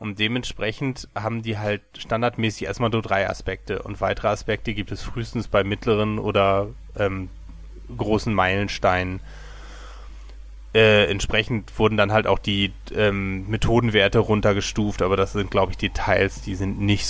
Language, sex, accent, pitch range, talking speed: German, male, German, 100-115 Hz, 145 wpm